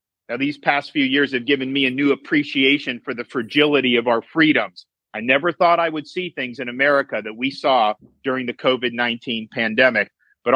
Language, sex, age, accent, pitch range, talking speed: English, male, 50-69, American, 120-145 Hz, 195 wpm